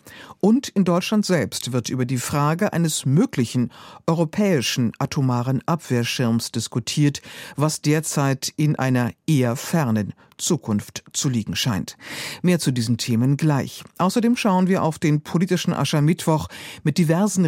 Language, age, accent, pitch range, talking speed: German, 50-69, German, 125-175 Hz, 130 wpm